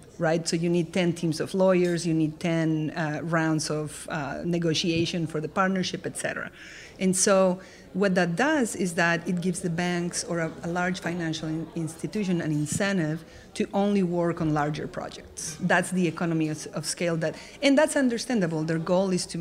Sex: female